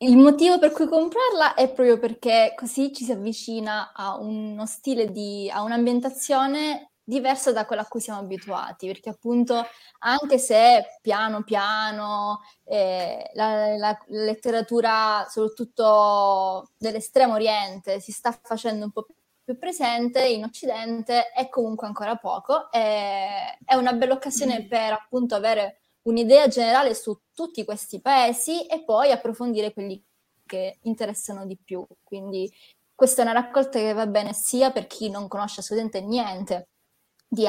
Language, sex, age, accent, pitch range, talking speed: Italian, female, 20-39, native, 205-245 Hz, 140 wpm